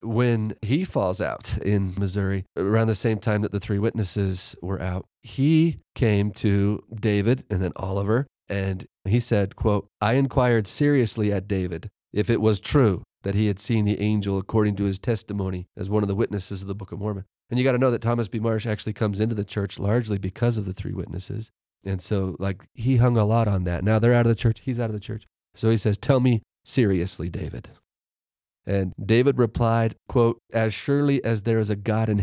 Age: 30-49